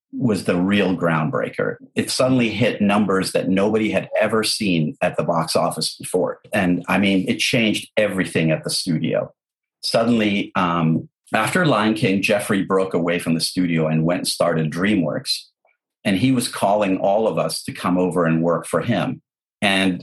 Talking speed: 175 wpm